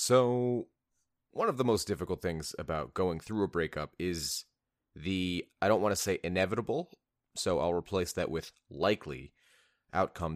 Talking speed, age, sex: 155 wpm, 30-49, male